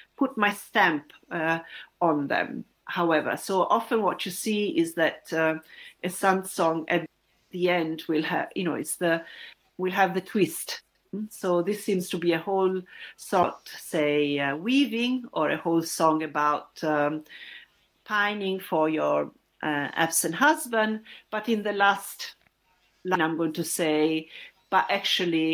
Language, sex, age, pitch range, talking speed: English, female, 50-69, 165-230 Hz, 155 wpm